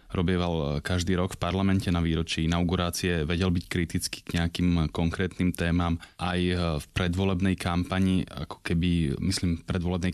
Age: 20-39